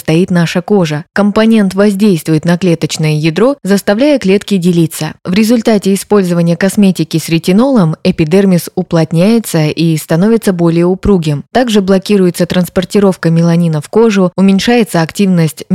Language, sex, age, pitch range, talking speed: Russian, female, 20-39, 165-210 Hz, 120 wpm